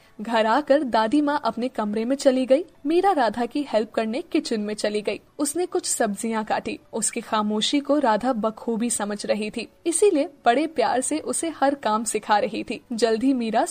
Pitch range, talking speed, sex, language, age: 225-290 Hz, 185 wpm, female, Hindi, 10-29